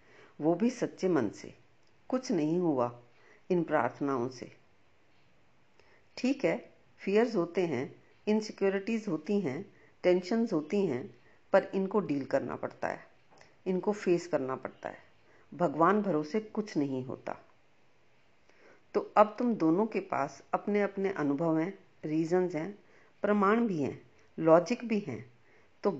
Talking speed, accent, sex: 130 wpm, native, female